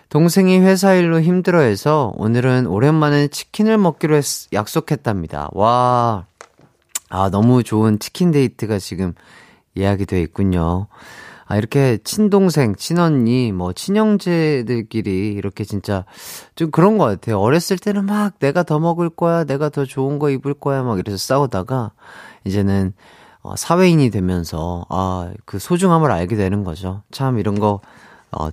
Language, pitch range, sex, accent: Korean, 105-165 Hz, male, native